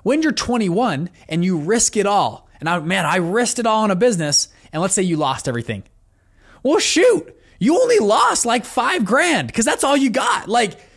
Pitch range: 150-225 Hz